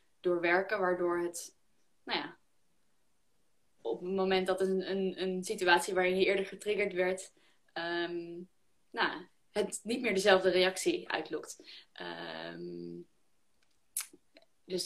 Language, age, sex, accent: Dutch, 20-39, female, Dutch